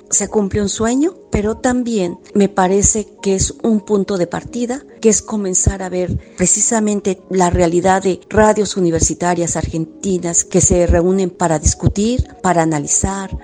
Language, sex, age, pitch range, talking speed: Spanish, female, 40-59, 180-215 Hz, 145 wpm